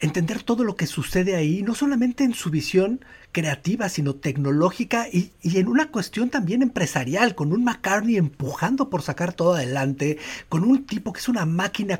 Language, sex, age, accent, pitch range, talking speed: Spanish, male, 50-69, Mexican, 155-215 Hz, 180 wpm